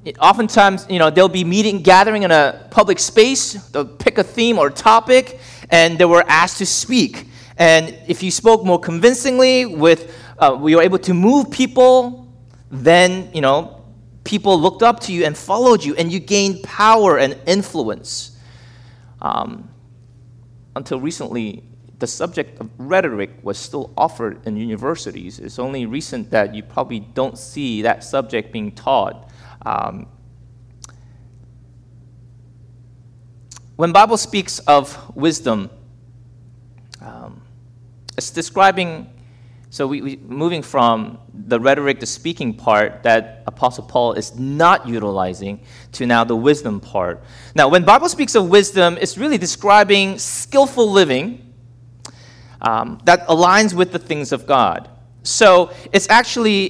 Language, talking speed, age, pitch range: English, 140 wpm, 30-49, 120-185 Hz